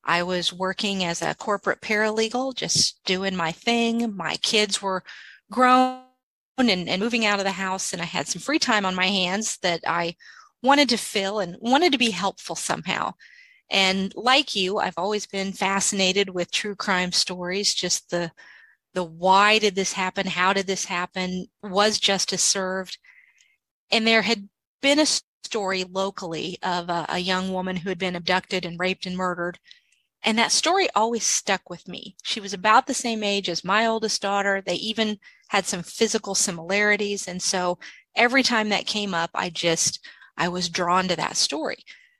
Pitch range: 180-220 Hz